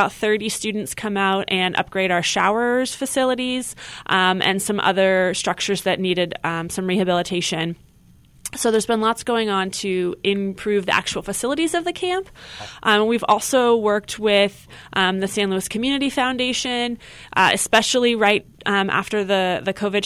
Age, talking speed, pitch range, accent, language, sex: 20-39, 160 wpm, 180-225 Hz, American, English, female